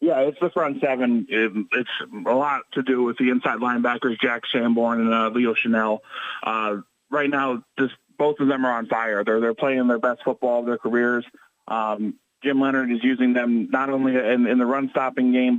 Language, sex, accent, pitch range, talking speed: English, male, American, 120-130 Hz, 205 wpm